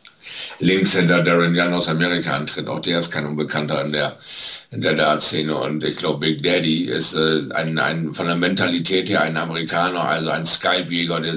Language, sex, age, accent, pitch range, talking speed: German, male, 60-79, German, 75-90 Hz, 190 wpm